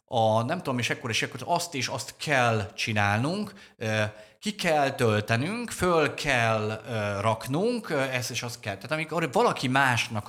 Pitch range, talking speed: 100-140 Hz, 155 wpm